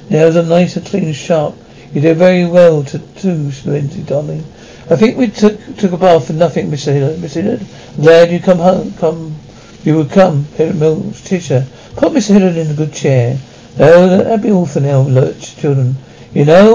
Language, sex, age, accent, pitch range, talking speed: English, male, 60-79, British, 145-180 Hz, 200 wpm